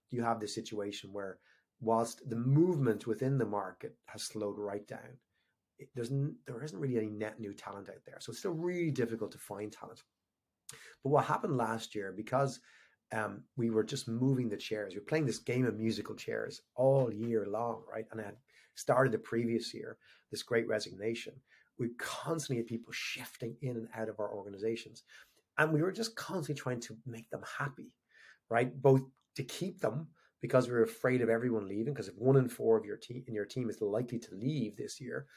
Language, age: English, 30-49